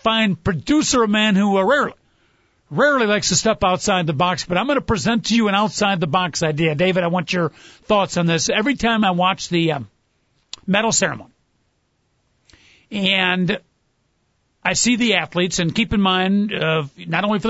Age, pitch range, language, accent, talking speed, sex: 50-69, 180-240 Hz, English, American, 175 wpm, male